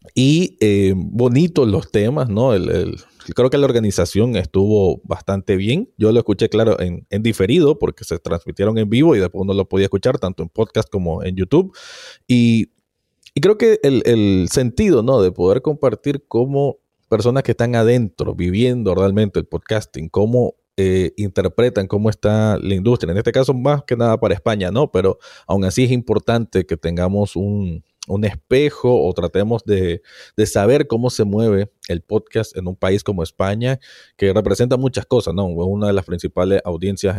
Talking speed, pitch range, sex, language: 180 wpm, 95-120 Hz, male, Spanish